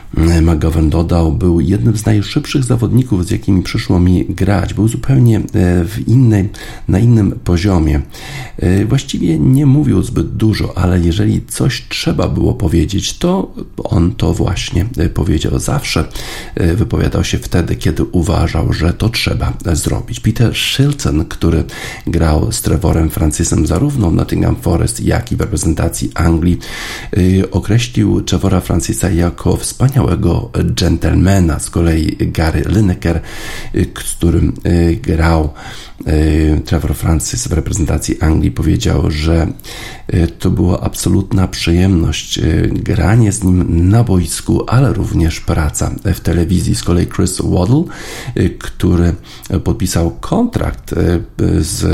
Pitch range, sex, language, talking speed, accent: 85-110 Hz, male, Polish, 120 wpm, native